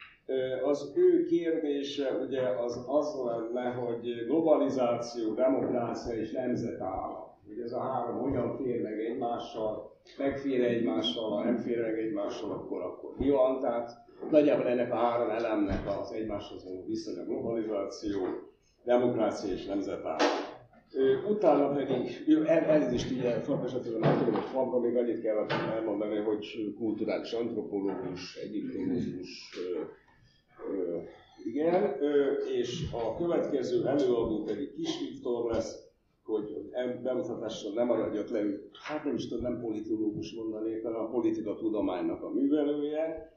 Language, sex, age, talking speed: Hungarian, male, 60-79, 120 wpm